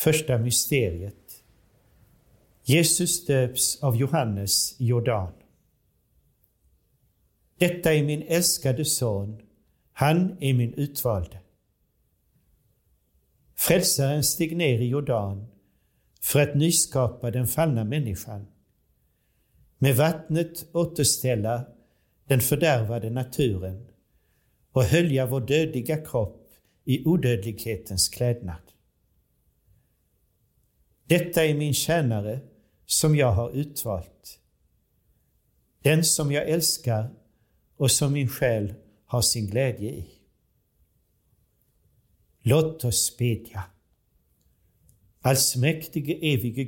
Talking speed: 85 wpm